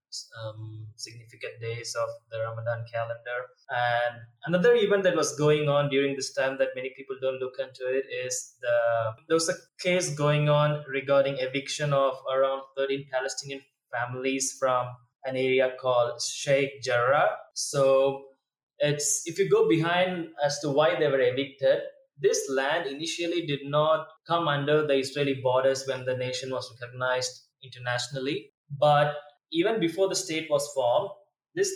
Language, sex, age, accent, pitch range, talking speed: English, male, 20-39, Indian, 125-160 Hz, 155 wpm